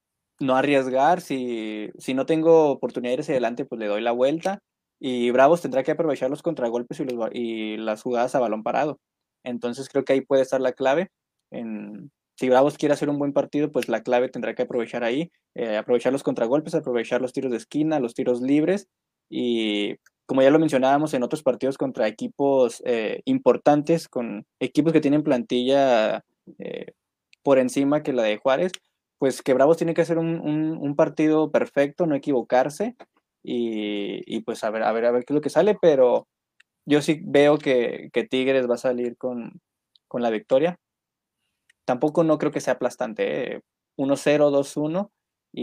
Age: 20-39